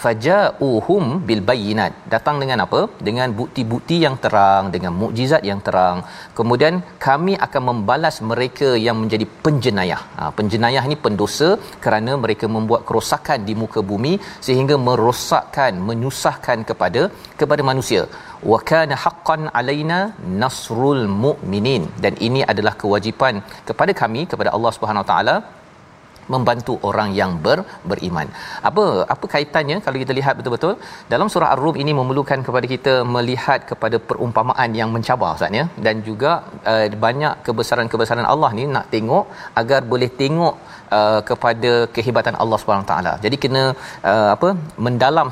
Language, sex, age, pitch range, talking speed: Malayalam, male, 40-59, 110-145 Hz, 140 wpm